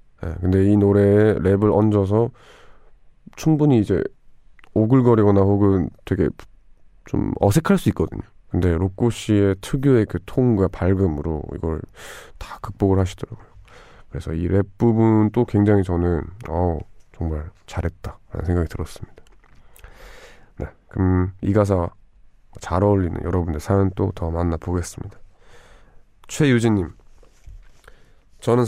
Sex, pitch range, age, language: male, 90-110 Hz, 20-39, Korean